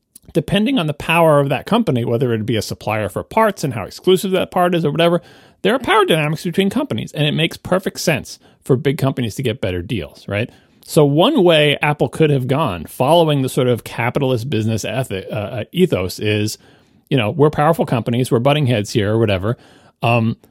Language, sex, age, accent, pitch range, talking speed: English, male, 40-59, American, 105-150 Hz, 205 wpm